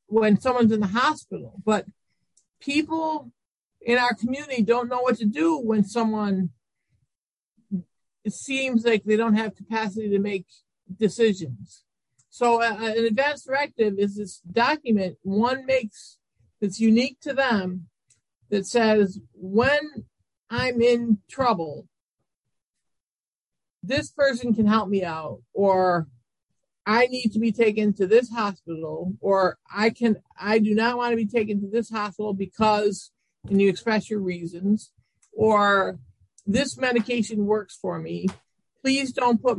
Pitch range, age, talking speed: 195-240 Hz, 50-69, 135 wpm